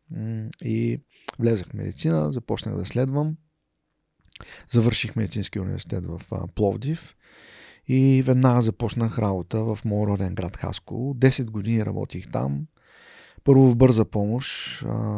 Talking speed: 105 wpm